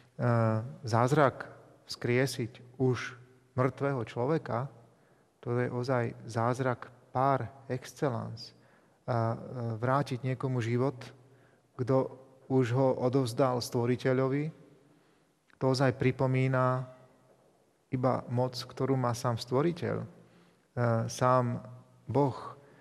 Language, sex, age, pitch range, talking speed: Slovak, male, 40-59, 120-135 Hz, 80 wpm